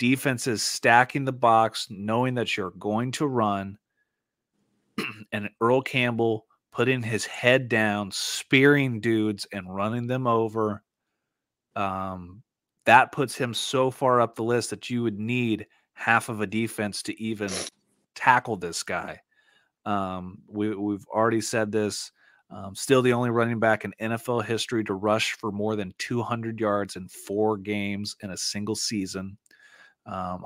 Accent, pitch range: American, 105-130 Hz